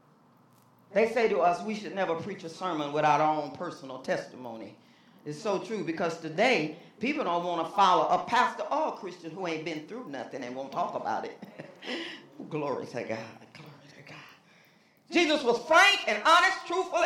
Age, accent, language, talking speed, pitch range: 40-59, American, English, 170 wpm, 160-240 Hz